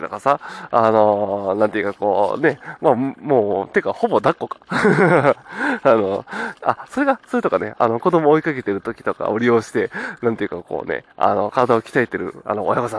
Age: 20-39